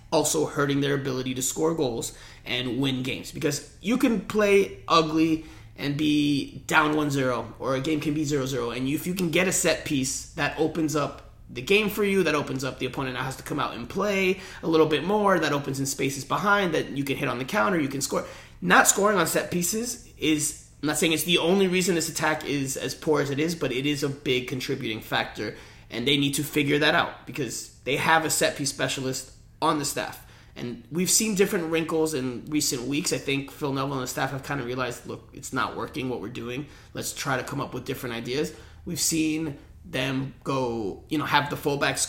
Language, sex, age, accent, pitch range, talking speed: English, male, 30-49, American, 130-155 Hz, 225 wpm